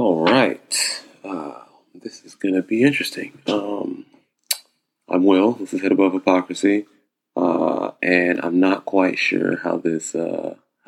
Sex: male